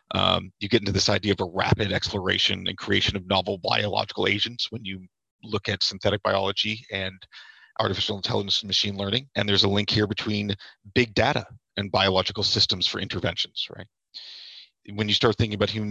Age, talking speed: 40-59, 180 wpm